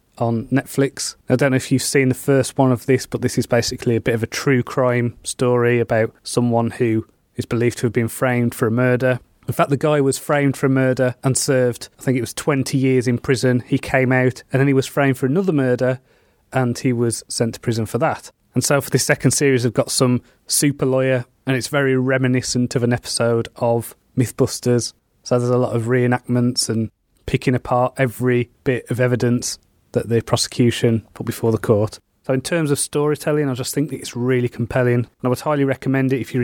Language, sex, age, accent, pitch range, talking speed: English, male, 30-49, British, 120-135 Hz, 220 wpm